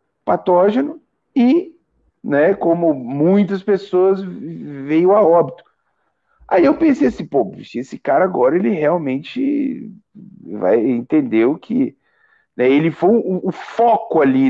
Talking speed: 115 wpm